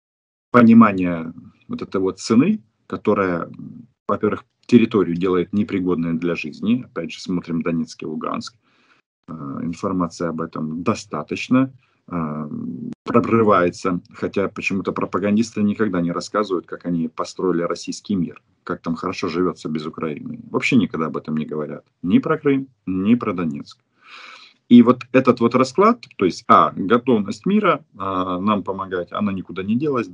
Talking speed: 135 wpm